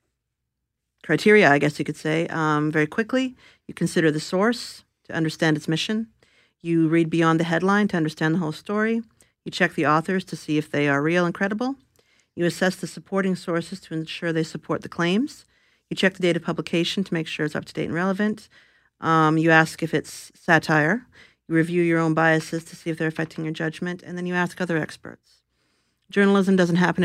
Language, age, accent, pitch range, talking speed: English, 40-59, American, 150-175 Hz, 205 wpm